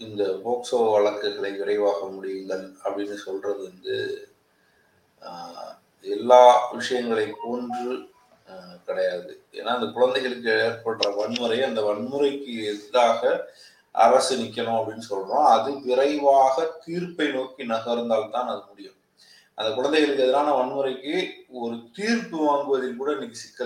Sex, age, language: male, 30-49, Tamil